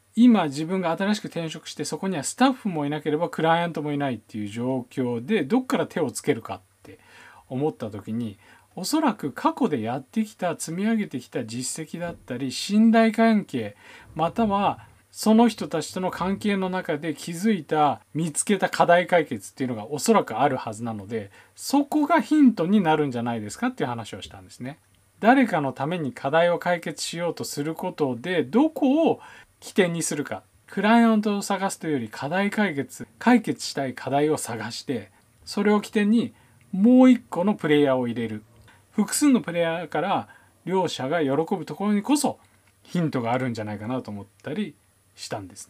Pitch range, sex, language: 125-205 Hz, male, Japanese